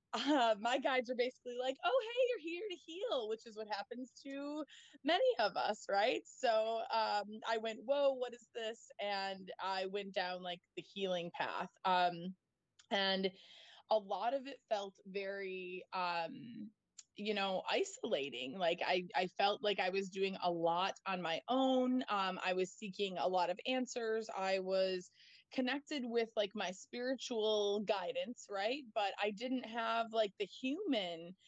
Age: 20-39